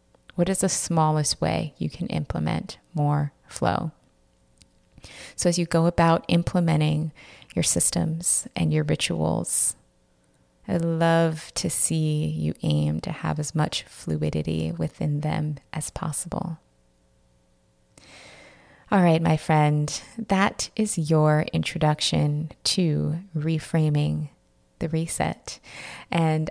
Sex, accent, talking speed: female, American, 110 wpm